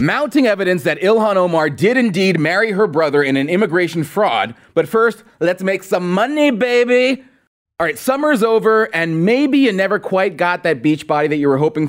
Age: 30-49